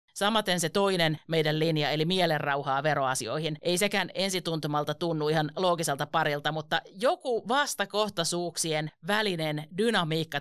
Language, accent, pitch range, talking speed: Finnish, native, 150-185 Hz, 115 wpm